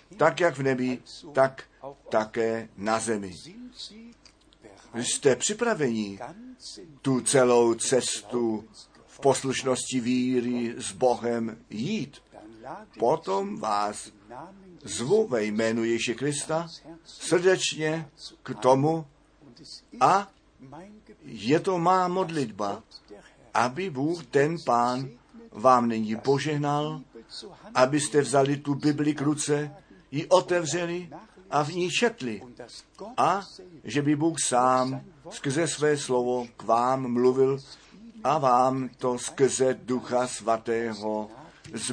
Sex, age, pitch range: male, 50-69, 115-155 Hz